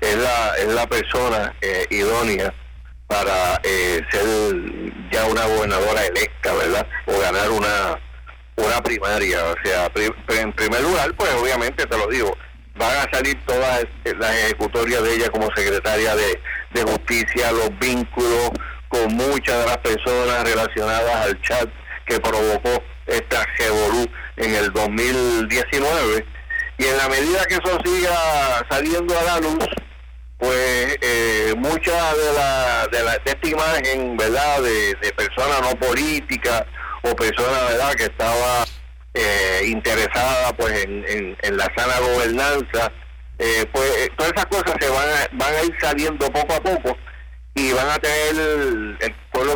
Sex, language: male, Spanish